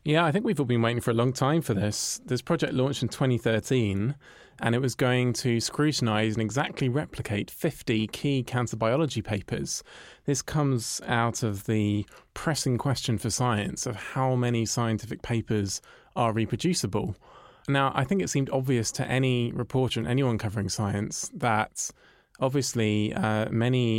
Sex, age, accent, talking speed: male, 20-39, British, 165 wpm